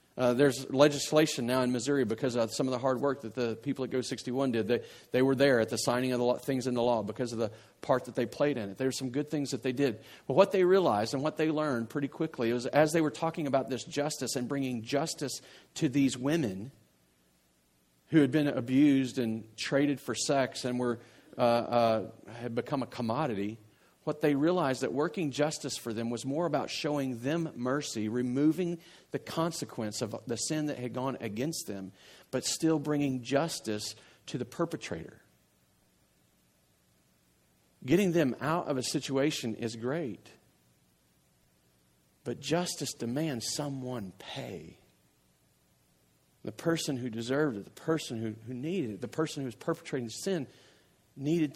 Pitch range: 115-145 Hz